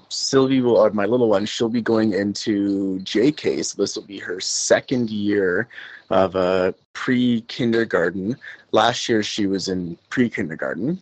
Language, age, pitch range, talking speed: English, 30-49, 100-130 Hz, 150 wpm